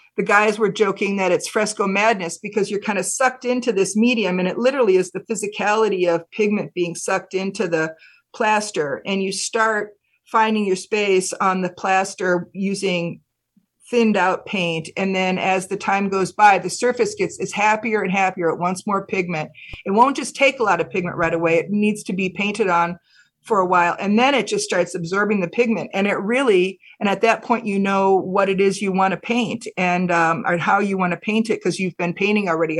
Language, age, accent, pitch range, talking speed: English, 50-69, American, 180-220 Hz, 210 wpm